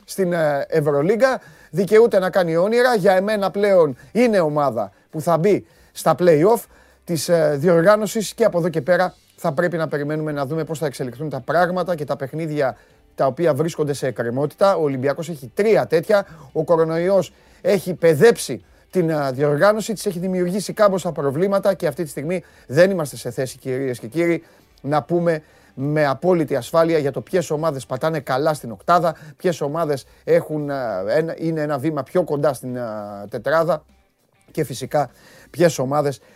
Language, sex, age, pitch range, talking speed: Greek, male, 30-49, 140-195 Hz, 155 wpm